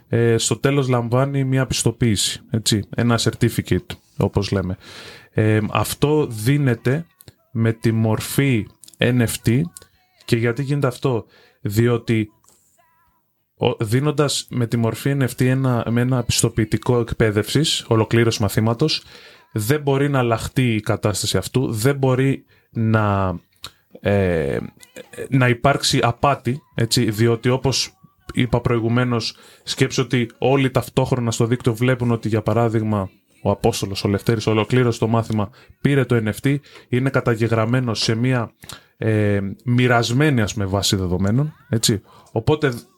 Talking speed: 115 wpm